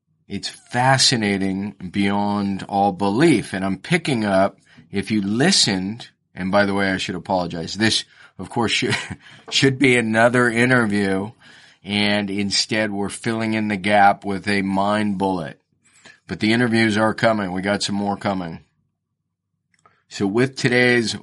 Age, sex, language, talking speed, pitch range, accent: 30-49, male, English, 145 wpm, 95-110 Hz, American